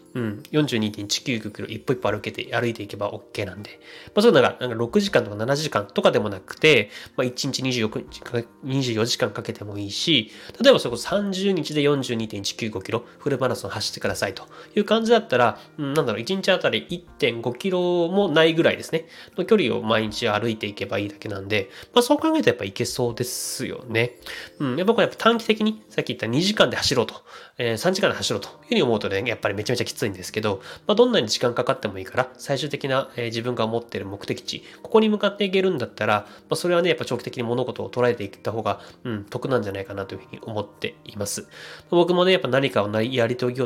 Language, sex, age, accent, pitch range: Japanese, male, 20-39, native, 110-165 Hz